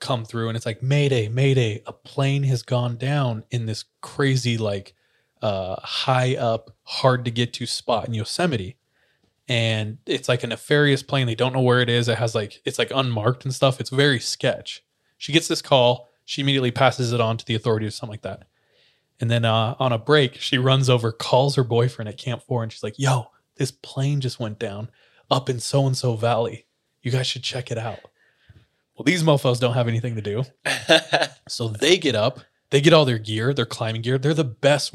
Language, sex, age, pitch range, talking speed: English, male, 20-39, 115-135 Hz, 210 wpm